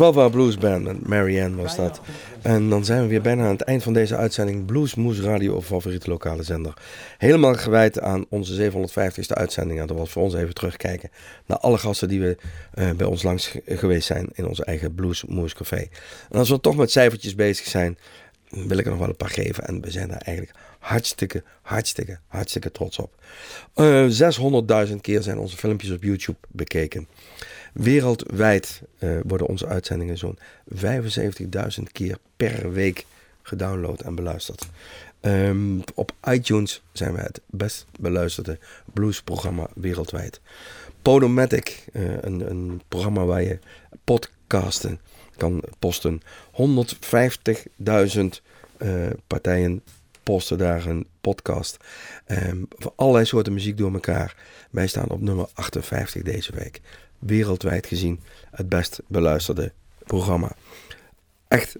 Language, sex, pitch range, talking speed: Dutch, male, 90-110 Hz, 145 wpm